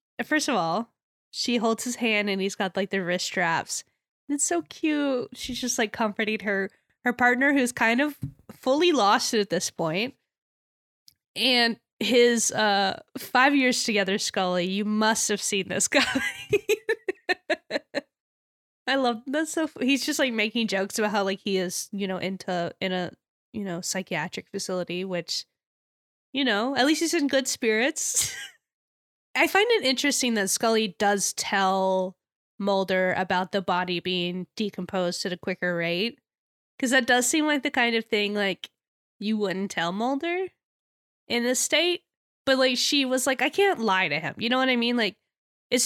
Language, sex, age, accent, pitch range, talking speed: English, female, 20-39, American, 190-260 Hz, 170 wpm